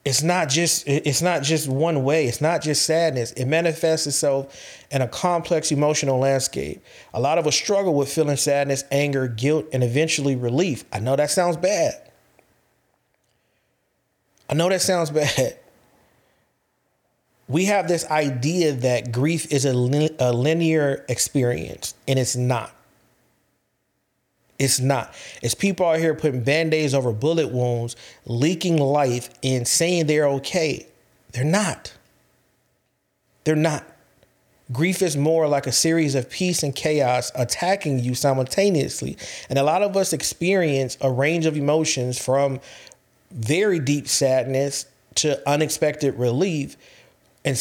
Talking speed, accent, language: 135 wpm, American, English